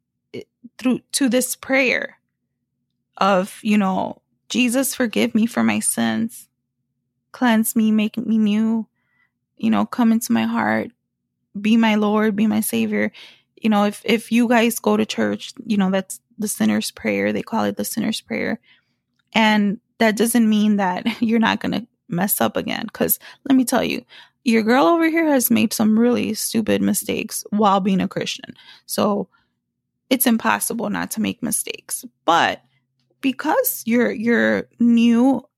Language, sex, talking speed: English, female, 160 wpm